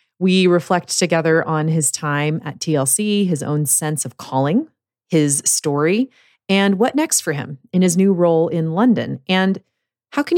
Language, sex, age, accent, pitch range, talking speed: English, female, 30-49, American, 150-205 Hz, 170 wpm